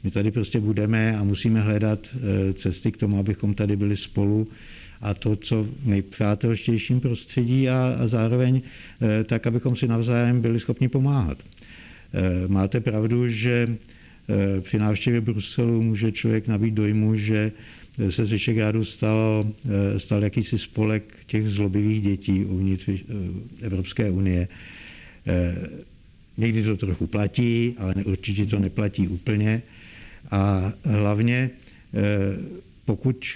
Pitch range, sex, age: 100-115 Hz, male, 60-79